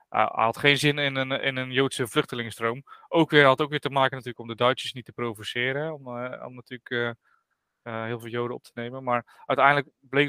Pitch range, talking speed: 120-135 Hz, 235 wpm